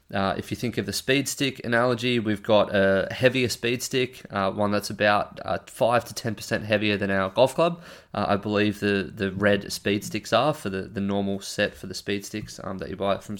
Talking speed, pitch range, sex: 235 wpm, 100-115 Hz, male